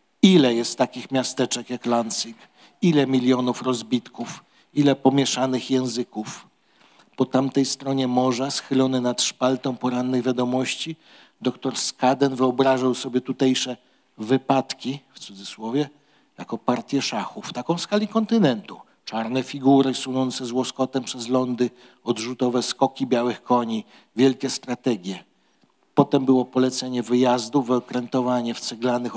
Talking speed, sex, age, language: 115 wpm, male, 50-69, Polish